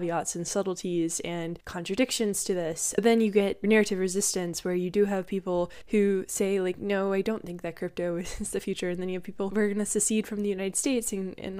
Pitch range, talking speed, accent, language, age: 175-205 Hz, 230 wpm, American, English, 10-29